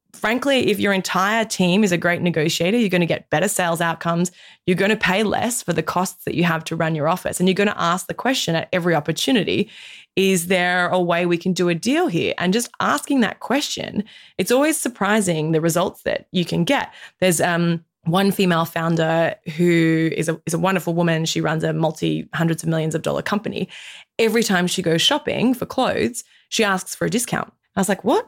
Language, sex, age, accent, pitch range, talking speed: English, female, 20-39, Australian, 170-215 Hz, 220 wpm